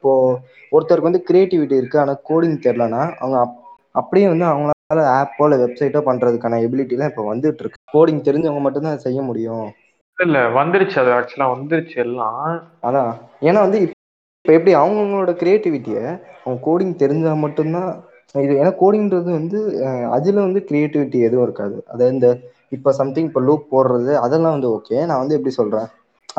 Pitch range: 125-160 Hz